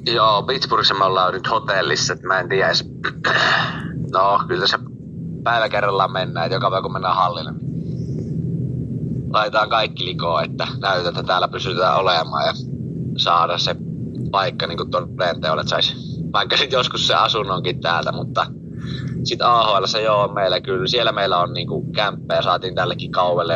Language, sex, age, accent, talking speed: Finnish, male, 30-49, native, 150 wpm